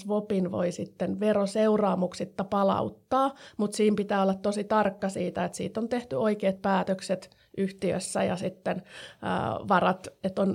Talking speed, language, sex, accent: 130 wpm, Finnish, female, native